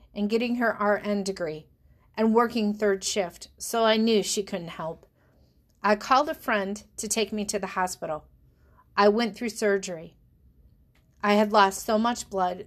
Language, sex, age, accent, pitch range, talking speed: English, female, 40-59, American, 195-255 Hz, 165 wpm